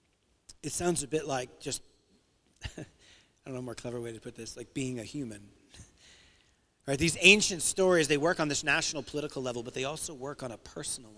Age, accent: 40-59, American